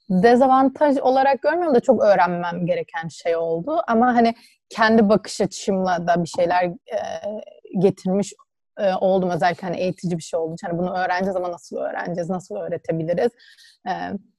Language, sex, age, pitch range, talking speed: Turkish, female, 30-49, 170-215 Hz, 150 wpm